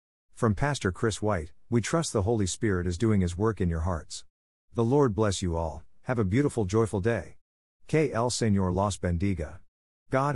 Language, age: English, 50-69